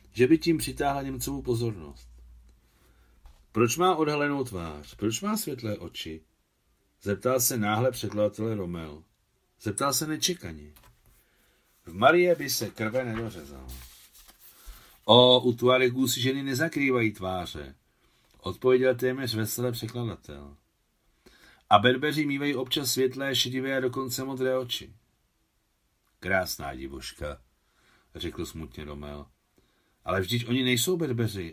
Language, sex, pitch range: Czech, male, 95-125 Hz